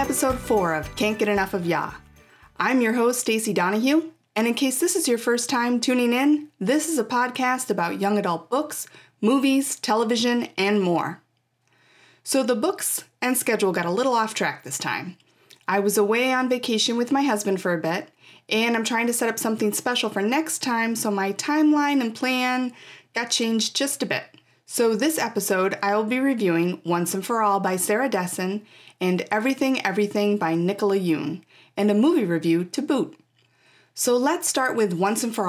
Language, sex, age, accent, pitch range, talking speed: English, female, 30-49, American, 190-260 Hz, 190 wpm